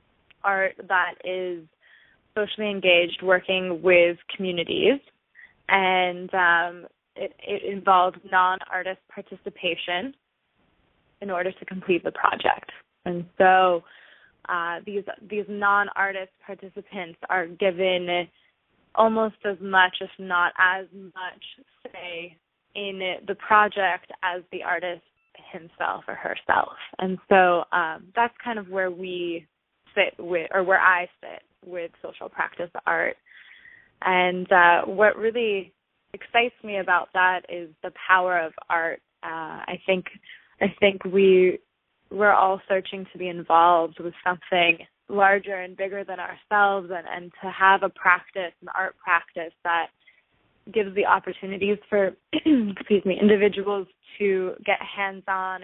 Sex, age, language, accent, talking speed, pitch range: female, 20-39, English, American, 125 wpm, 175-200 Hz